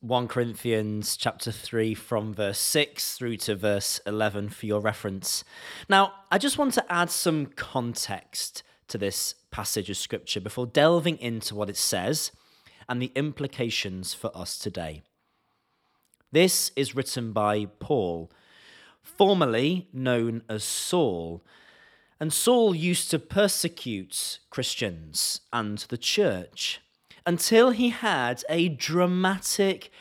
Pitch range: 110-170 Hz